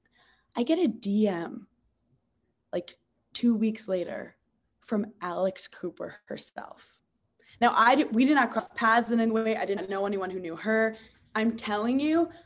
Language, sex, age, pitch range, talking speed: English, female, 20-39, 185-225 Hz, 160 wpm